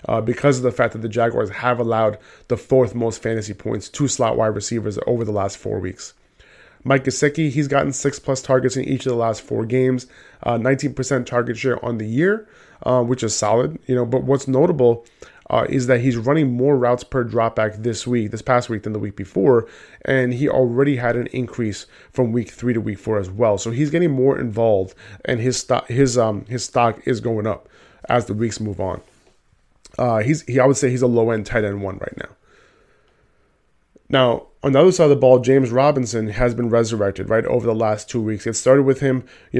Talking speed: 225 wpm